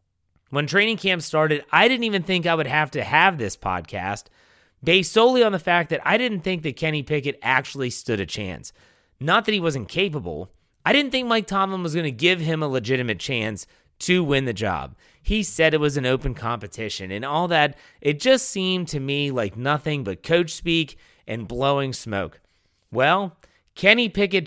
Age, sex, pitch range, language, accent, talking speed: 30-49, male, 120-175 Hz, English, American, 195 wpm